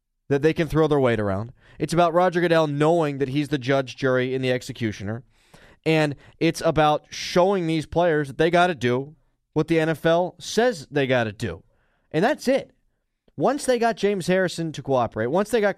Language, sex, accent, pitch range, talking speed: English, male, American, 130-180 Hz, 200 wpm